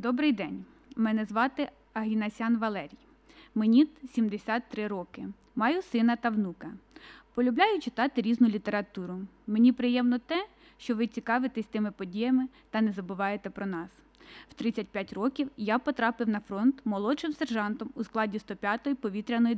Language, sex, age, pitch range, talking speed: Ukrainian, female, 20-39, 215-275 Hz, 130 wpm